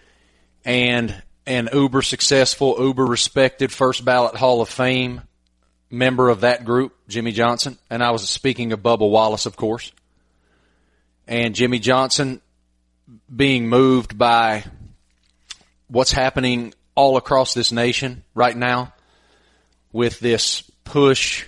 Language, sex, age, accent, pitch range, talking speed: English, male, 30-49, American, 110-130 Hz, 120 wpm